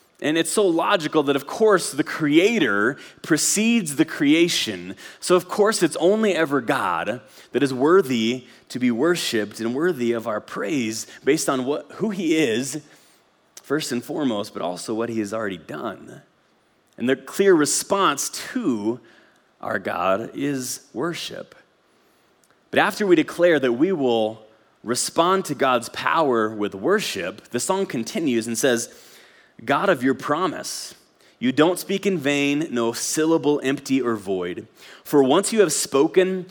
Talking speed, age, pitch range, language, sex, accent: 150 wpm, 30-49, 120-165 Hz, English, male, American